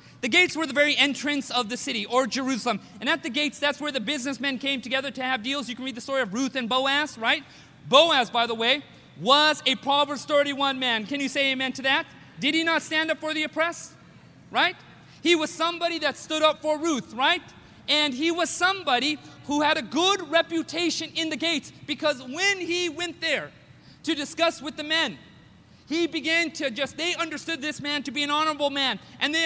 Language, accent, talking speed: English, American, 210 wpm